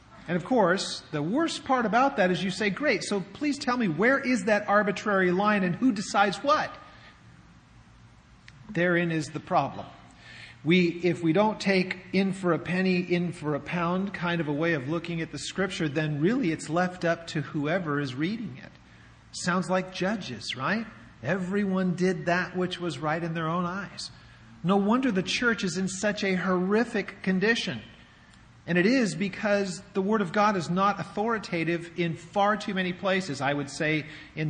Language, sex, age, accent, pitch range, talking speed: English, male, 40-59, American, 150-195 Hz, 185 wpm